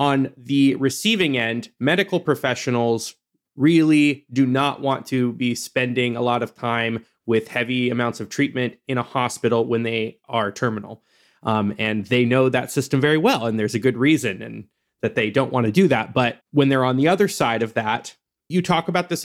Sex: male